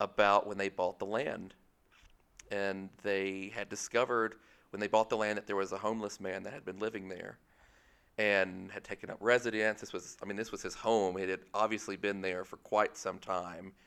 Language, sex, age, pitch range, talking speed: English, male, 40-59, 95-110 Hz, 210 wpm